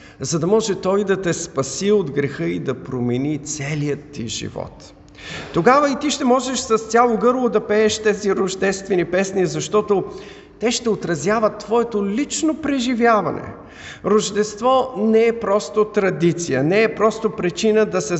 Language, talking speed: Bulgarian, 150 wpm